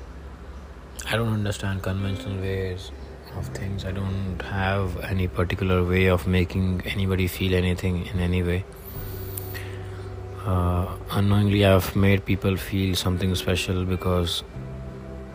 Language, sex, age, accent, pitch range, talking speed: English, male, 30-49, Indian, 80-95 Hz, 115 wpm